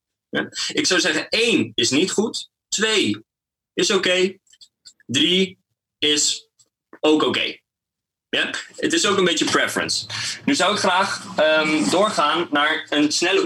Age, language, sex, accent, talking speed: 20-39, Dutch, male, Dutch, 145 wpm